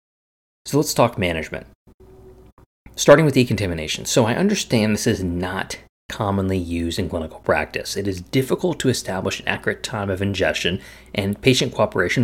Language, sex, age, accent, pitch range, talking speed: English, male, 30-49, American, 90-115 Hz, 150 wpm